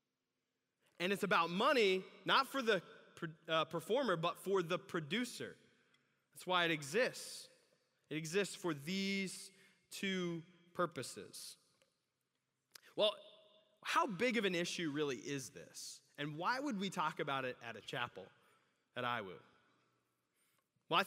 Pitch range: 155-200 Hz